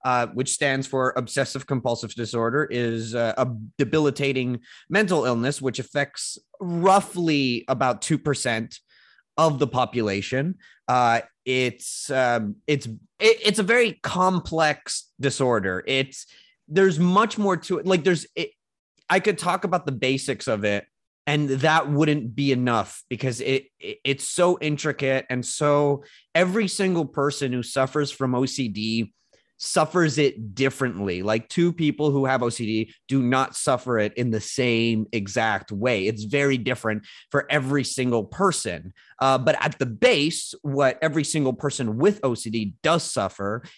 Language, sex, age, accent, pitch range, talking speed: English, male, 30-49, American, 115-150 Hz, 145 wpm